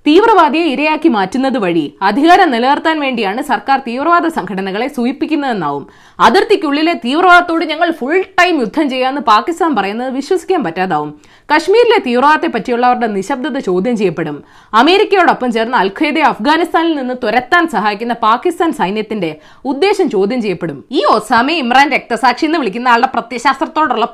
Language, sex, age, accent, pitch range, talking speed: Malayalam, female, 20-39, native, 210-320 Hz, 120 wpm